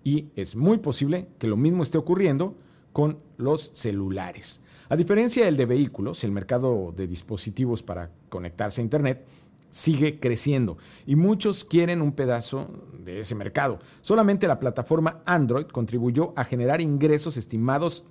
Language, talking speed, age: Spanish, 145 wpm, 50-69